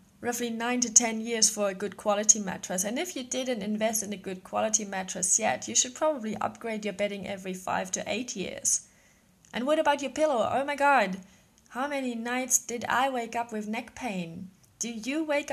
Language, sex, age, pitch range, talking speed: English, female, 20-39, 190-250 Hz, 205 wpm